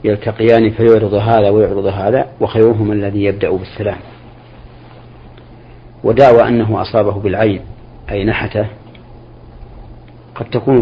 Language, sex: Arabic, male